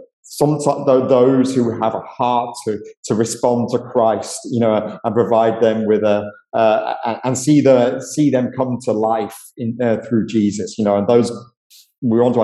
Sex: male